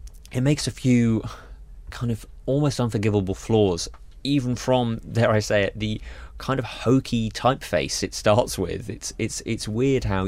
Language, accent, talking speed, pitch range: English, British, 165 wpm, 80-105 Hz